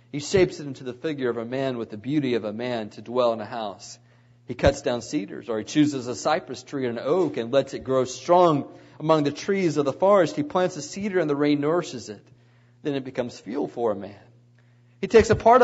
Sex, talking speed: male, 245 wpm